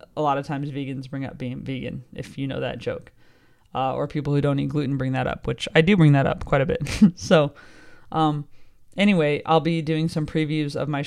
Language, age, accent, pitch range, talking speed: English, 20-39, American, 140-160 Hz, 235 wpm